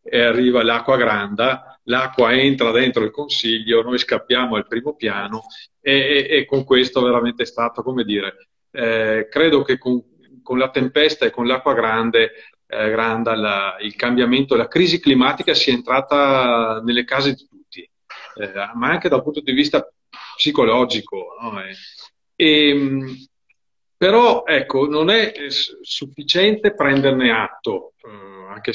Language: Italian